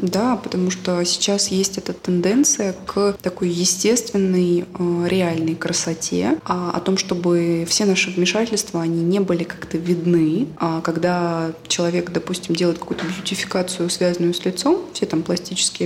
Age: 20-39